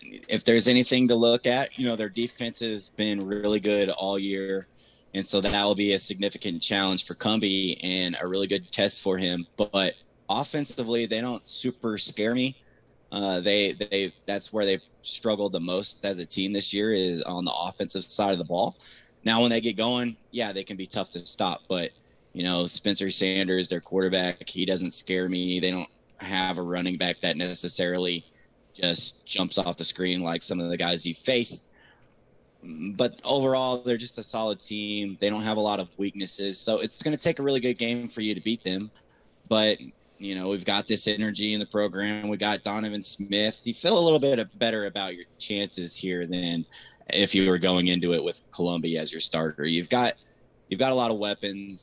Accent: American